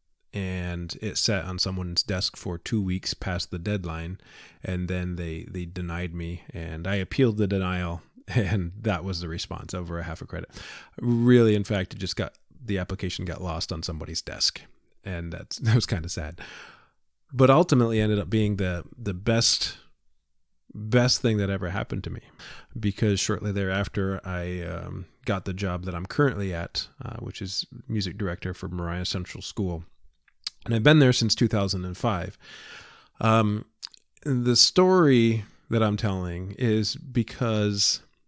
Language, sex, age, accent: English, male, 20-39, American